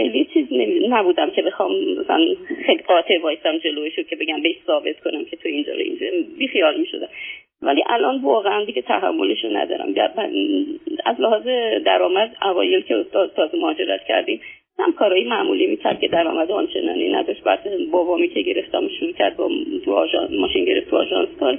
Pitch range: 325-370 Hz